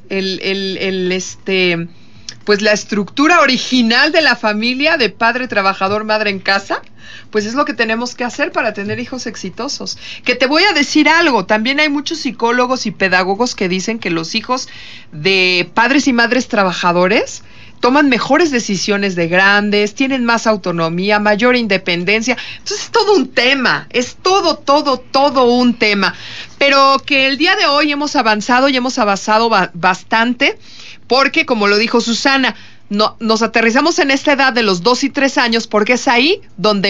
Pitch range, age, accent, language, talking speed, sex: 200-265 Hz, 40-59, Mexican, Spanish, 170 wpm, female